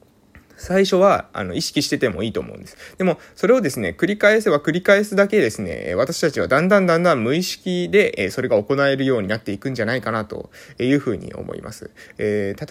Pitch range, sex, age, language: 115-185 Hz, male, 20-39, Japanese